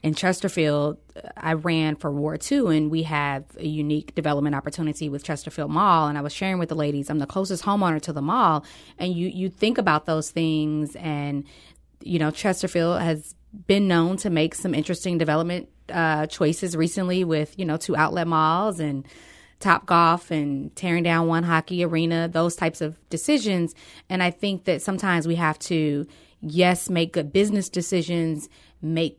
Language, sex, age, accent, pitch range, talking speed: English, female, 20-39, American, 155-185 Hz, 175 wpm